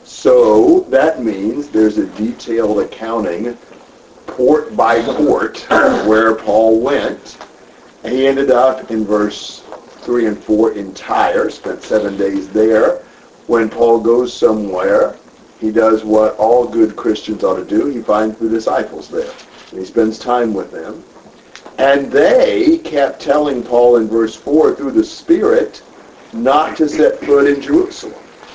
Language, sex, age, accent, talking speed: English, male, 50-69, American, 145 wpm